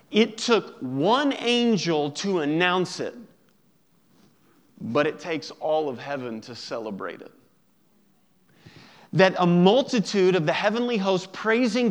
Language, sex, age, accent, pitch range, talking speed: English, male, 40-59, American, 170-220 Hz, 120 wpm